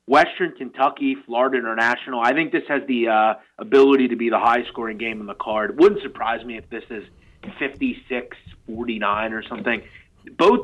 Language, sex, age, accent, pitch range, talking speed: English, male, 30-49, American, 115-150 Hz, 165 wpm